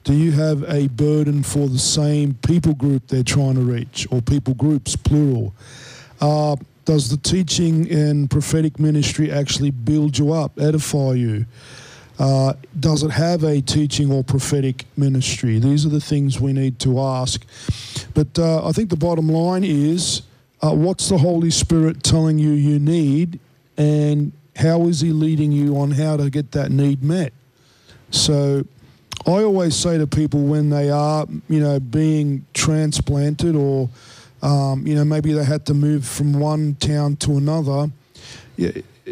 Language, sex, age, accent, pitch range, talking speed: English, male, 50-69, Australian, 135-160 Hz, 160 wpm